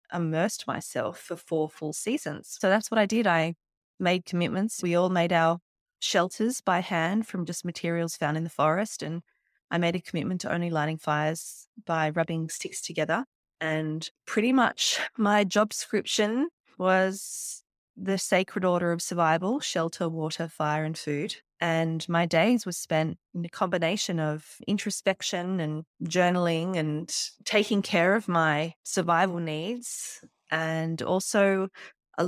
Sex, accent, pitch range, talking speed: female, Australian, 160-190 Hz, 150 wpm